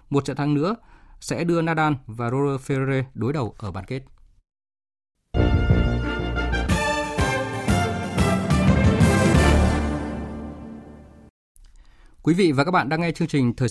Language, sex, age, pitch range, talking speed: Vietnamese, male, 20-39, 115-160 Hz, 110 wpm